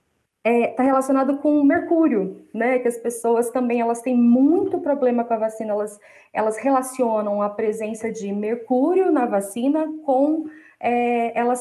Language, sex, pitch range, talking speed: Portuguese, female, 230-275 Hz, 145 wpm